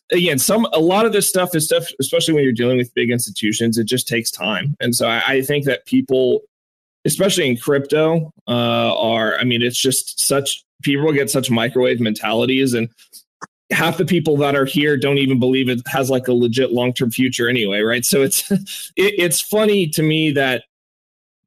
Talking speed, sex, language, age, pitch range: 195 wpm, male, English, 20-39, 120-155 Hz